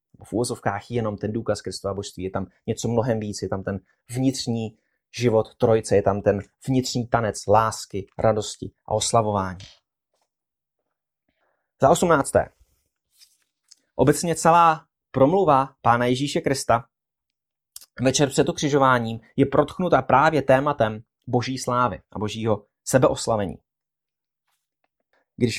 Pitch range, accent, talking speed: 115-160 Hz, native, 115 wpm